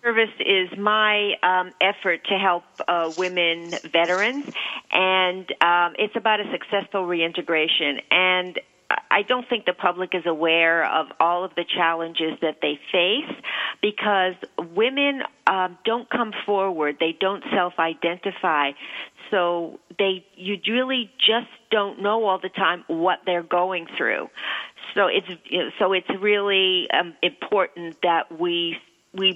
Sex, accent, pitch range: female, American, 175-210 Hz